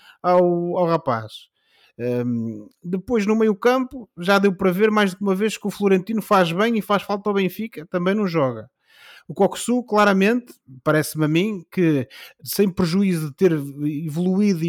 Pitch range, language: 140-190 Hz, Portuguese